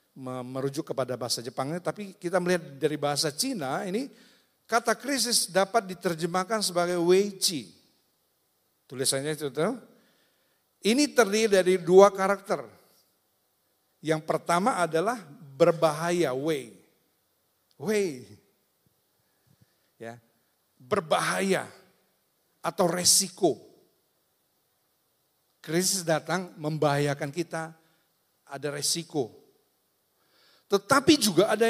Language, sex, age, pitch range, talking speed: Indonesian, male, 50-69, 145-195 Hz, 80 wpm